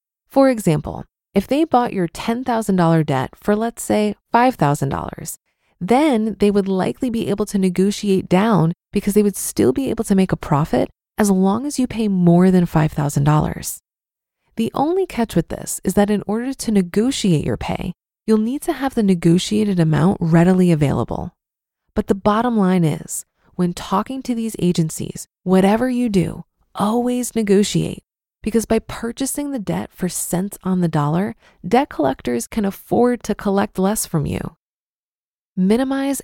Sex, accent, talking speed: female, American, 160 wpm